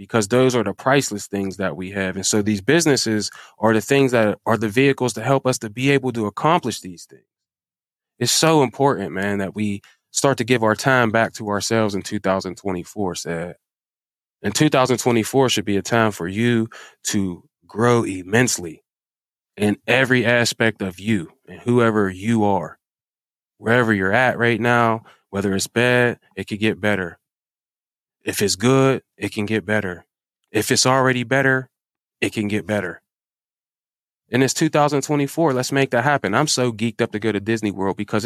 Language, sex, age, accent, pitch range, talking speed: English, male, 20-39, American, 100-125 Hz, 175 wpm